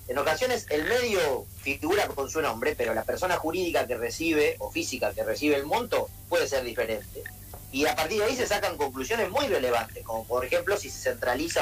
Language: Spanish